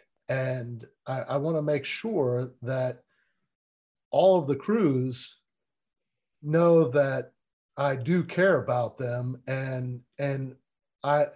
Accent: American